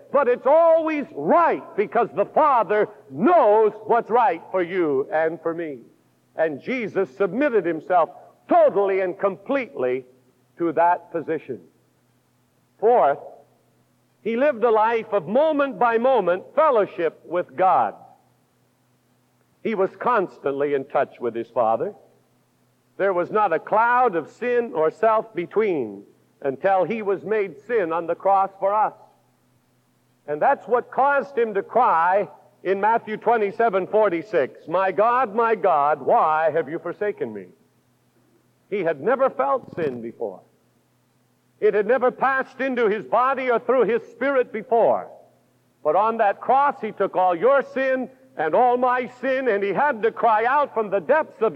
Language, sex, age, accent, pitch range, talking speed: English, male, 60-79, American, 180-260 Hz, 145 wpm